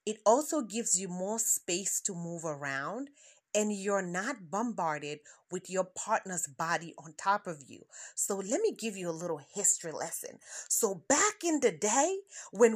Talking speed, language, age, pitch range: 170 wpm, English, 30-49, 195-280 Hz